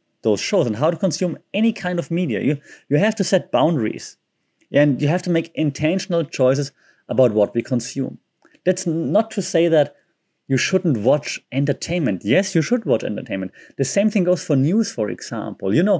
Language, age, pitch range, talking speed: English, 30-49, 125-170 Hz, 190 wpm